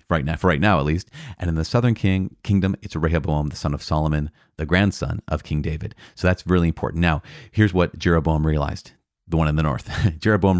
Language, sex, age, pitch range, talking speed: English, male, 40-59, 80-110 Hz, 220 wpm